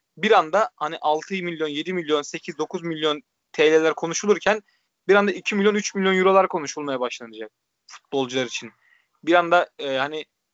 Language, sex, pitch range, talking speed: Turkish, male, 155-190 Hz, 155 wpm